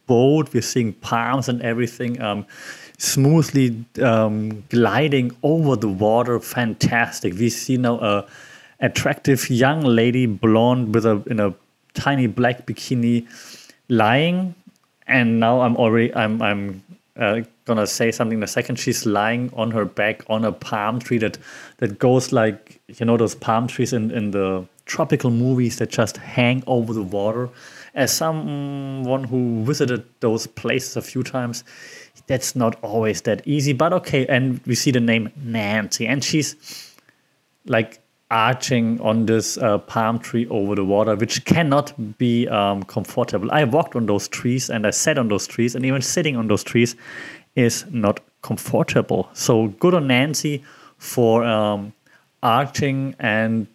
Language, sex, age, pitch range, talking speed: English, male, 30-49, 110-130 Hz, 155 wpm